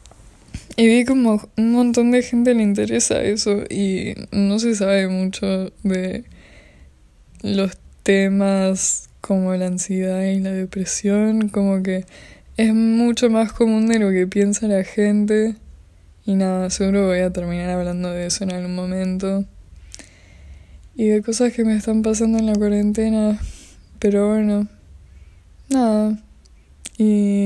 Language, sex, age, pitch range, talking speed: Spanish, female, 10-29, 180-215 Hz, 135 wpm